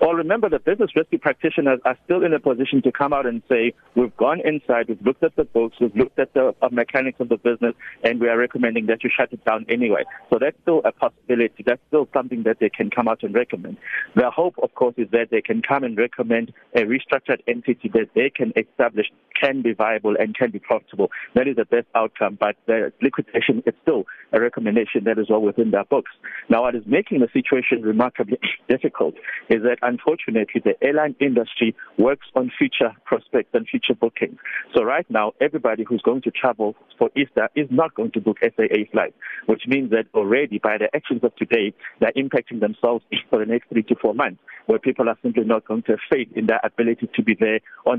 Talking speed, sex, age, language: 215 wpm, male, 60-79, English